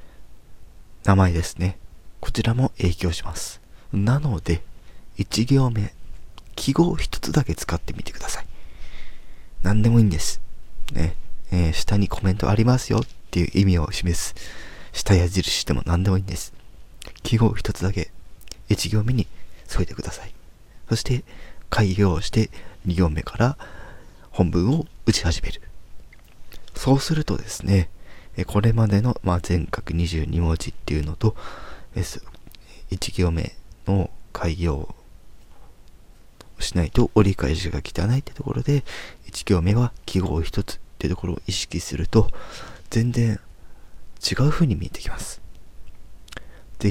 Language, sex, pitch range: Japanese, male, 85-105 Hz